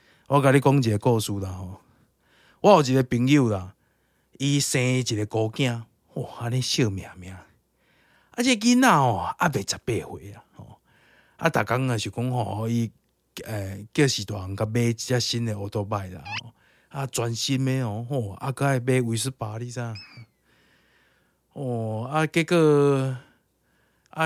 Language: Chinese